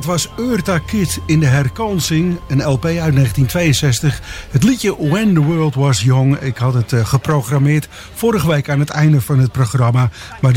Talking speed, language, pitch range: 175 wpm, English, 130-155 Hz